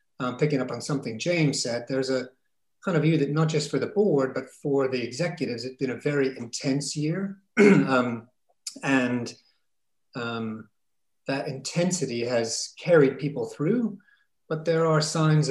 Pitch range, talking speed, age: 125-150 Hz, 160 wpm, 40-59